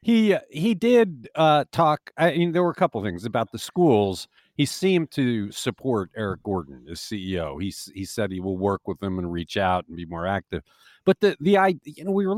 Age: 50-69